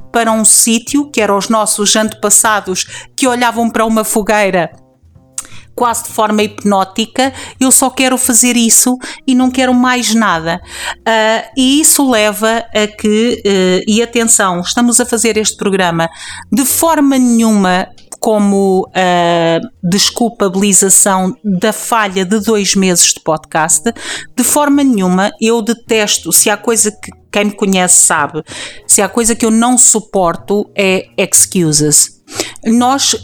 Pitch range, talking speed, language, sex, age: 190-235 Hz, 135 wpm, Portuguese, female, 50-69